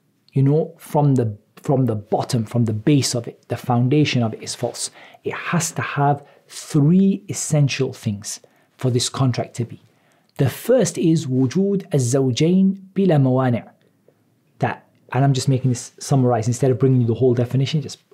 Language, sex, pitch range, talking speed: English, male, 120-145 Hz, 170 wpm